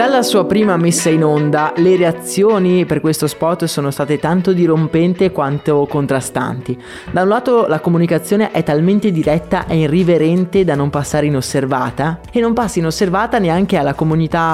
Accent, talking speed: native, 155 wpm